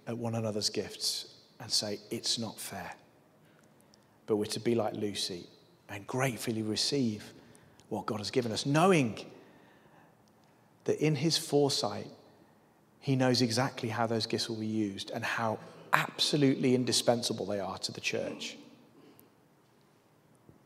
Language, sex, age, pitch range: English, male, 30-49, 130-180 Hz